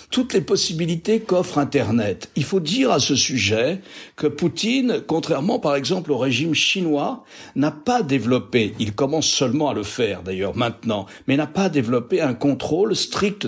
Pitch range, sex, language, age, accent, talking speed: 135-200 Hz, male, French, 60-79, French, 165 wpm